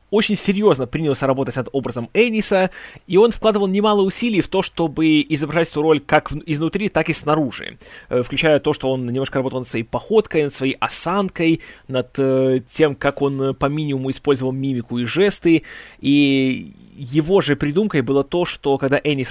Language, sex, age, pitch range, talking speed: Russian, male, 20-39, 135-180 Hz, 170 wpm